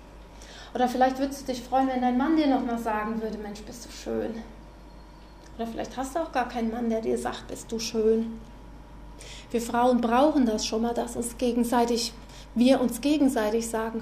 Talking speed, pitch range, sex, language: 185 wpm, 230-275 Hz, female, German